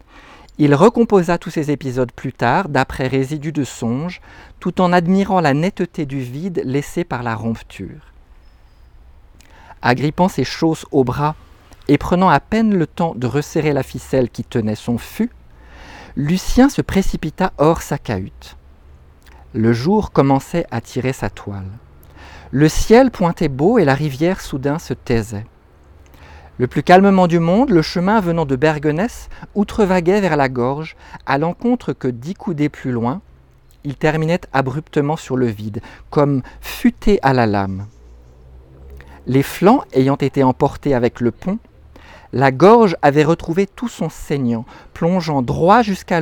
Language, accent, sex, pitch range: French, French, male, 115-175 Hz